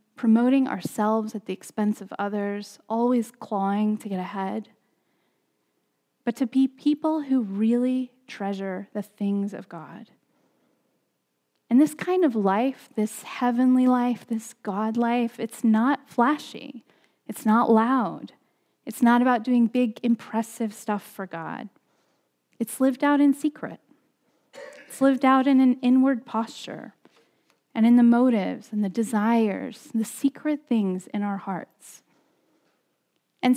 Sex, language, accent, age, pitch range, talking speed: female, English, American, 10-29, 215-270 Hz, 135 wpm